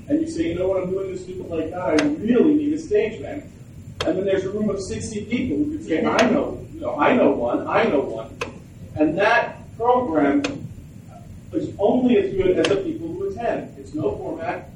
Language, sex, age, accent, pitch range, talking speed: English, male, 40-59, American, 140-185 Hz, 215 wpm